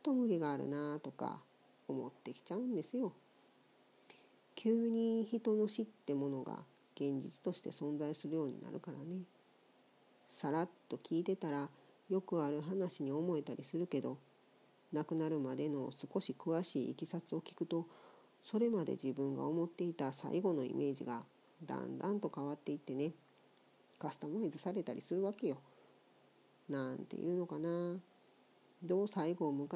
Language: Japanese